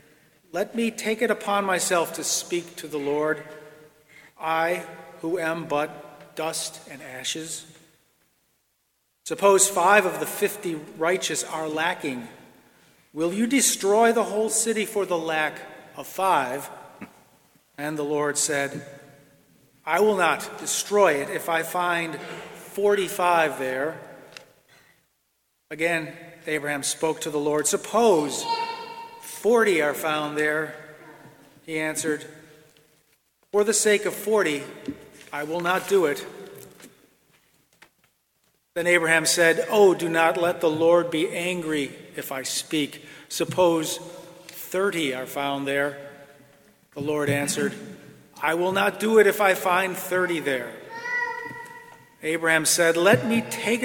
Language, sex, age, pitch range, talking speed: English, male, 40-59, 150-200 Hz, 125 wpm